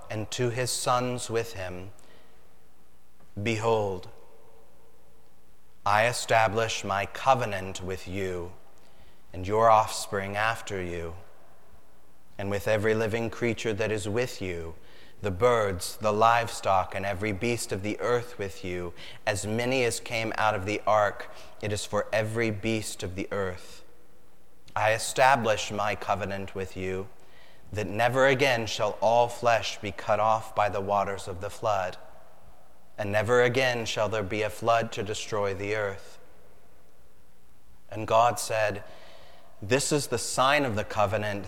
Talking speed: 140 wpm